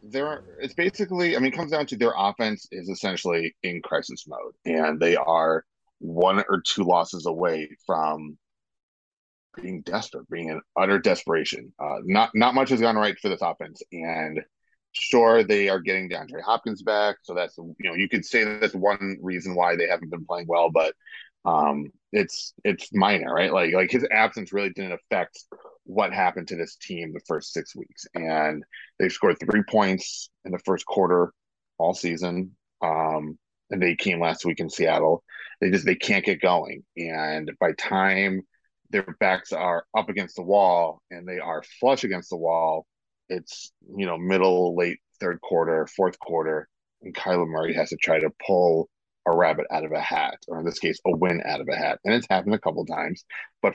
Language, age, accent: English, 30-49, American